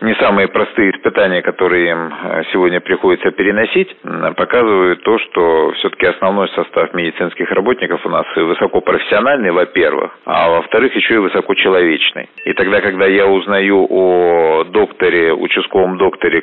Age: 40-59